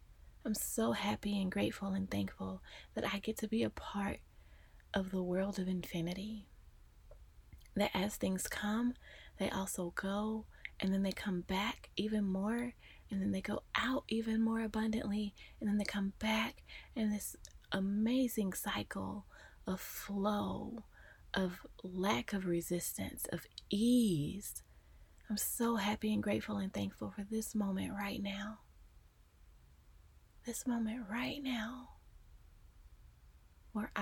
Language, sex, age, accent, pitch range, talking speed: English, female, 20-39, American, 190-220 Hz, 130 wpm